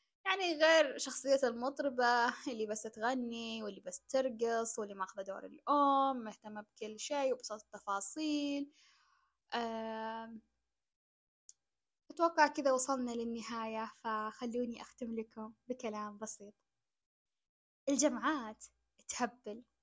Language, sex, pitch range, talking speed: Arabic, female, 220-270 Hz, 90 wpm